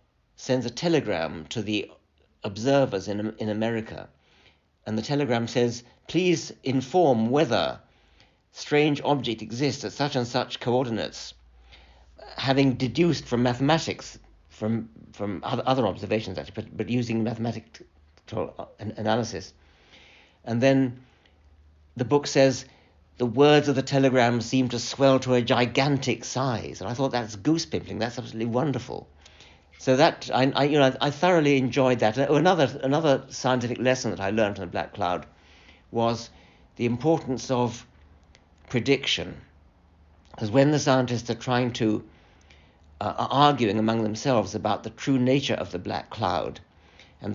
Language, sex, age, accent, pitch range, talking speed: English, male, 60-79, British, 95-130 Hz, 140 wpm